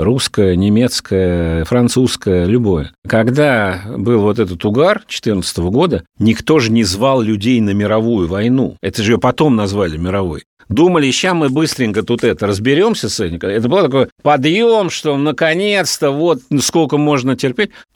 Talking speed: 145 wpm